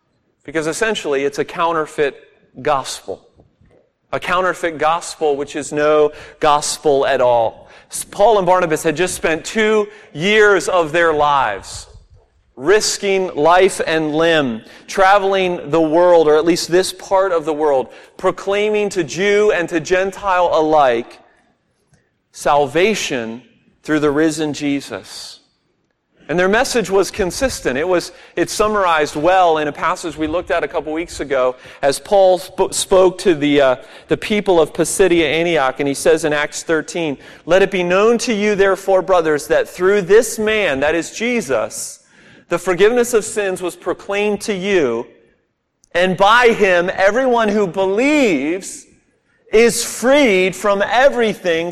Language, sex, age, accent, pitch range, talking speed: English, male, 40-59, American, 155-205 Hz, 145 wpm